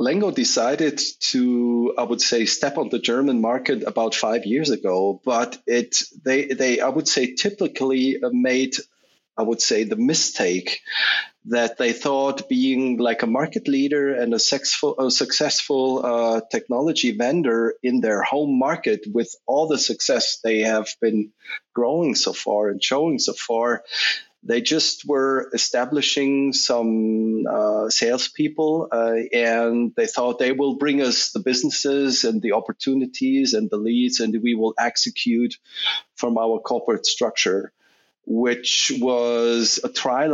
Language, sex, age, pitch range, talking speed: English, male, 30-49, 115-140 Hz, 145 wpm